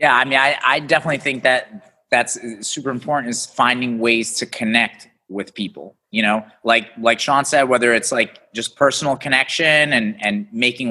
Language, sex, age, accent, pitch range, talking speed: English, male, 30-49, American, 115-160 Hz, 180 wpm